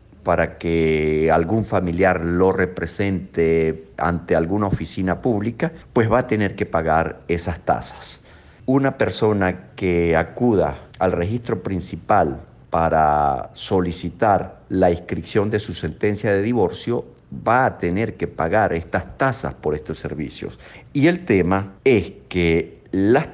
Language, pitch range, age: Spanish, 90-115 Hz, 50-69